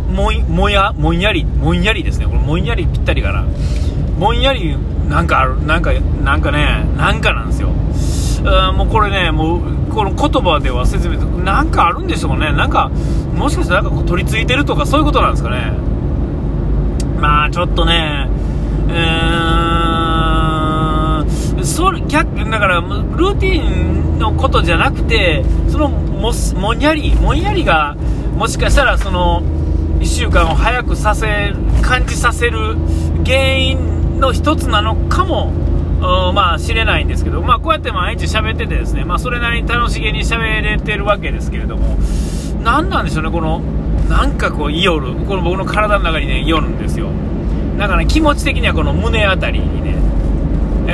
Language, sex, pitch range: Japanese, male, 75-85 Hz